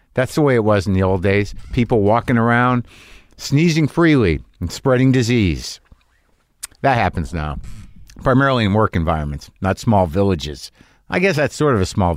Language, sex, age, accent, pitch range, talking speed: English, male, 50-69, American, 100-140 Hz, 170 wpm